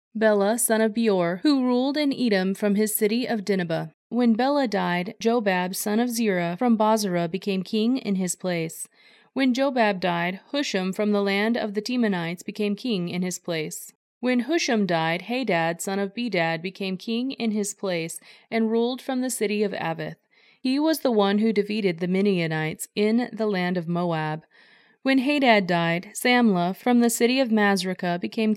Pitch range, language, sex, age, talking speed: 185-235 Hz, English, female, 30-49, 175 wpm